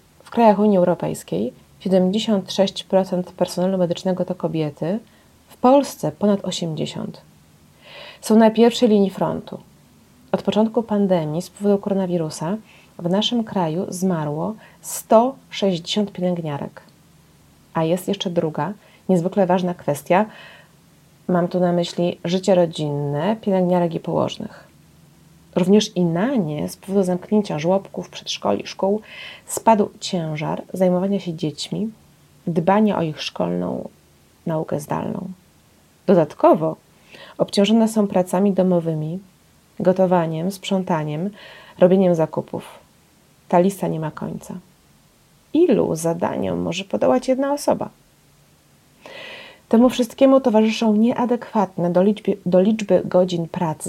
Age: 30-49